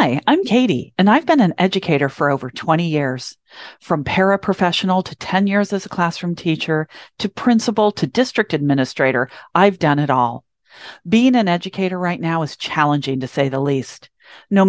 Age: 40-59